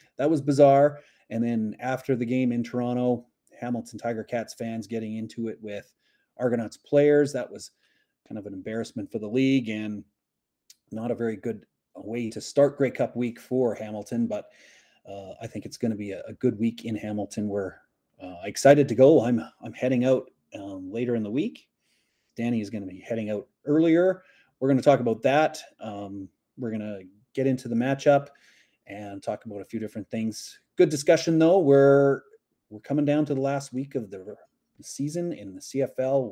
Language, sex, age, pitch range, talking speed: English, male, 30-49, 110-140 Hz, 190 wpm